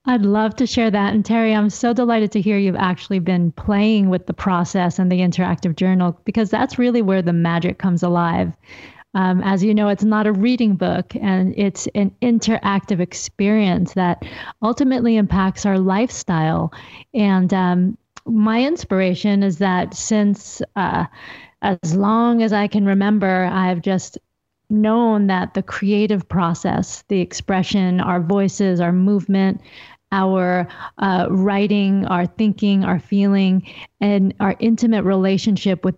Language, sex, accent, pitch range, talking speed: English, female, American, 185-210 Hz, 150 wpm